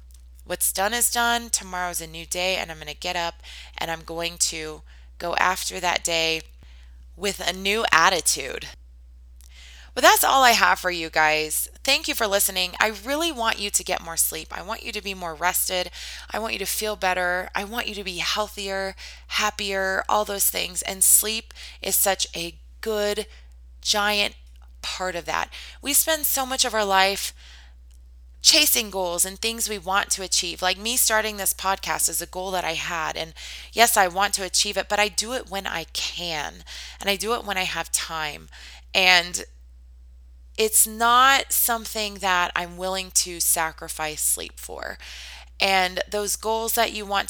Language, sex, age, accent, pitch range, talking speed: English, female, 20-39, American, 155-205 Hz, 185 wpm